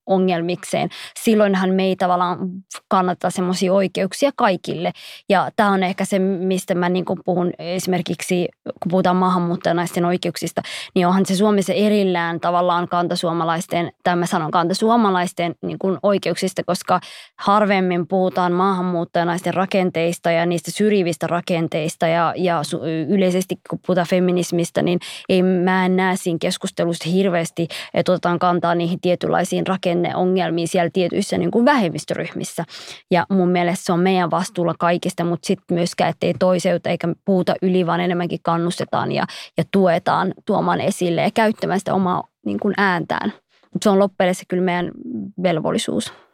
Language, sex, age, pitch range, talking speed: Finnish, female, 20-39, 175-190 Hz, 135 wpm